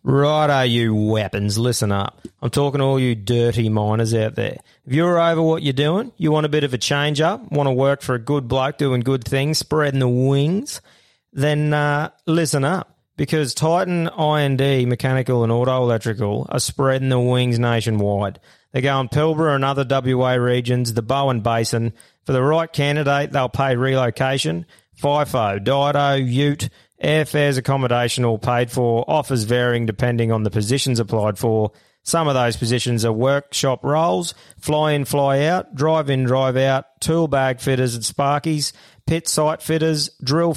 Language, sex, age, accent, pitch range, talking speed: English, male, 30-49, Australian, 120-150 Hz, 165 wpm